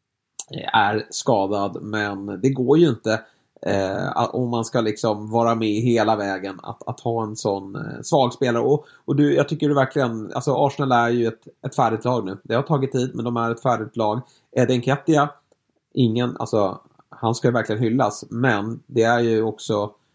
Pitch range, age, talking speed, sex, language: 110-130 Hz, 30-49, 195 wpm, male, Swedish